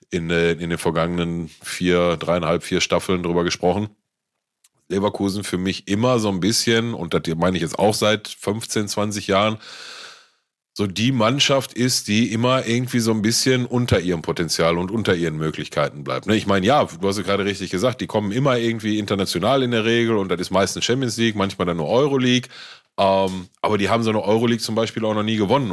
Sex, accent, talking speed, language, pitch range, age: male, German, 200 wpm, German, 95-115 Hz, 30-49